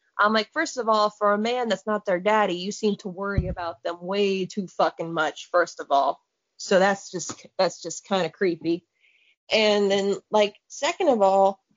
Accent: American